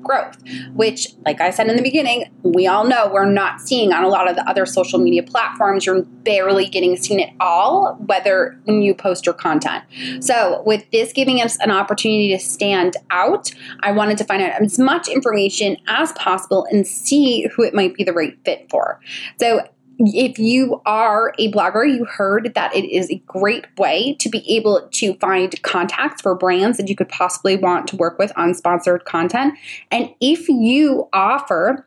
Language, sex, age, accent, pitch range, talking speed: English, female, 20-39, American, 195-270 Hz, 190 wpm